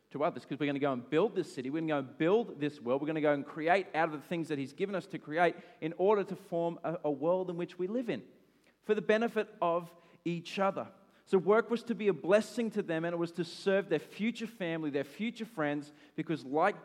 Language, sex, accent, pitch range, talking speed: English, male, Australian, 150-195 Hz, 265 wpm